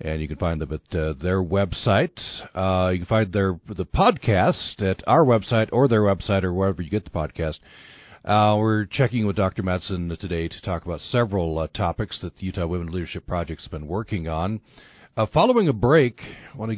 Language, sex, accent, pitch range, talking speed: English, male, American, 90-115 Hz, 205 wpm